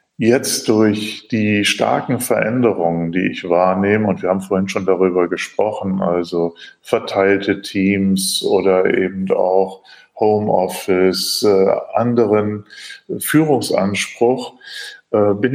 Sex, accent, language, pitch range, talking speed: male, German, German, 95-110 Hz, 95 wpm